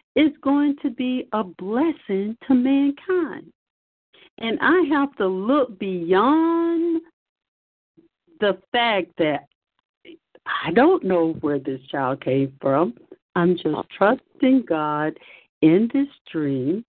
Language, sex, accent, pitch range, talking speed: English, female, American, 165-265 Hz, 115 wpm